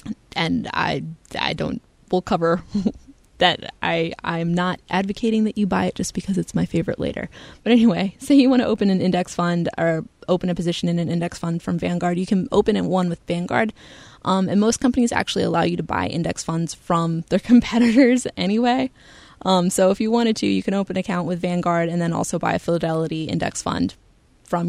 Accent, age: American, 20-39